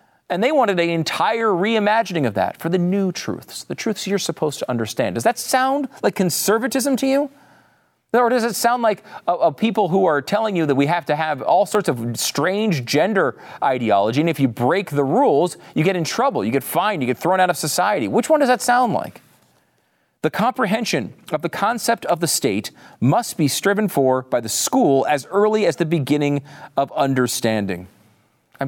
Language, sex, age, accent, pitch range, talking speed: English, male, 40-59, American, 140-210 Hz, 195 wpm